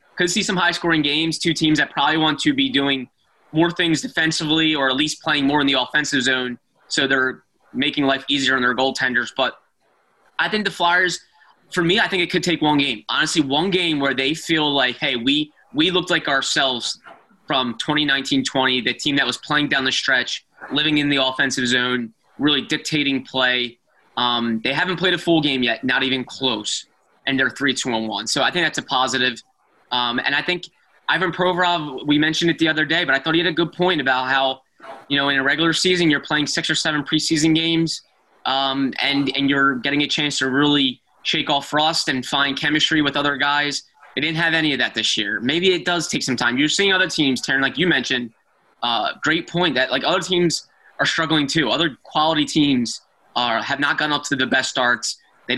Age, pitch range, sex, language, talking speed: 20-39, 135-165 Hz, male, English, 210 wpm